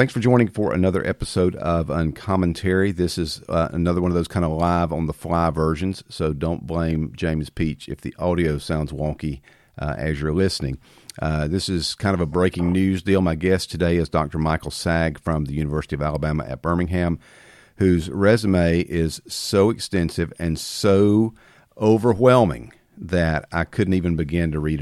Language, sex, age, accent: English, male, 50-69, American